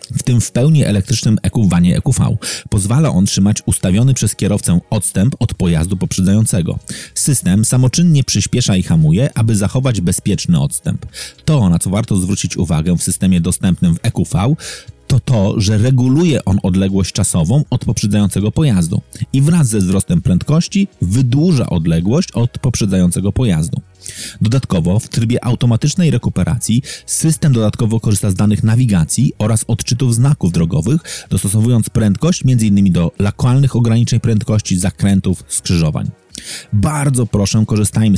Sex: male